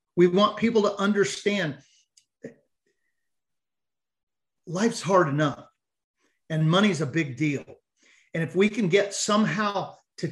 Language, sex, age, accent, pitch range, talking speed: English, male, 50-69, American, 155-200 Hz, 120 wpm